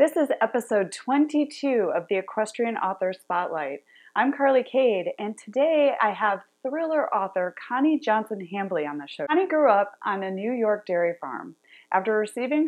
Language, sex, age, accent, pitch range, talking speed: English, female, 30-49, American, 175-235 Hz, 160 wpm